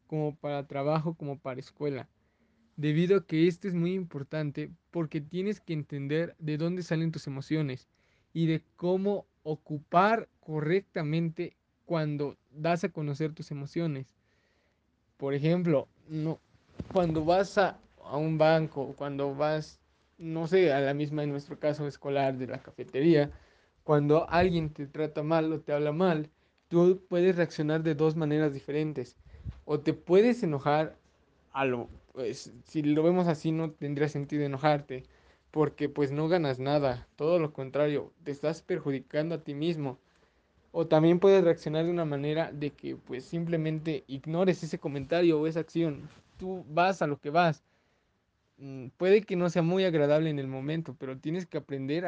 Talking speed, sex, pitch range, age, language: 155 wpm, male, 140-165 Hz, 20-39, Spanish